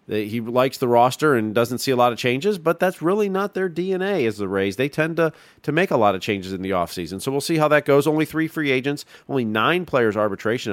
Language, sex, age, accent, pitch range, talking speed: English, male, 40-59, American, 105-140 Hz, 255 wpm